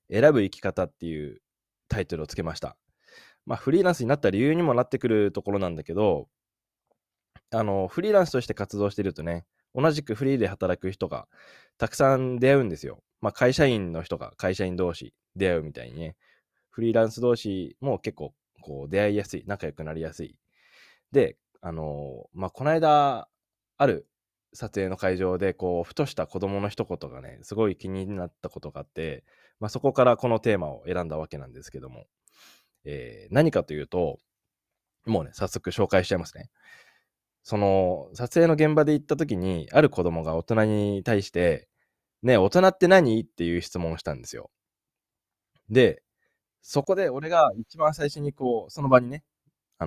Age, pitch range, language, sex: 20-39, 90-130 Hz, Japanese, male